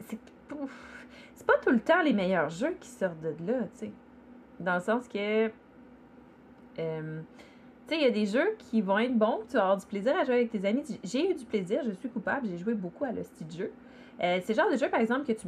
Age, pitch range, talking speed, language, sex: 30-49, 180-250 Hz, 250 wpm, French, female